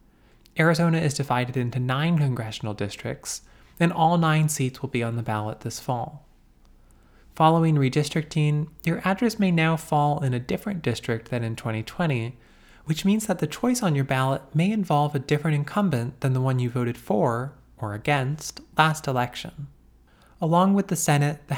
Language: English